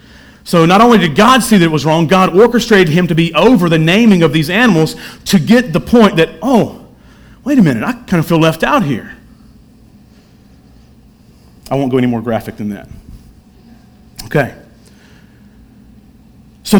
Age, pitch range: 40-59, 140-190 Hz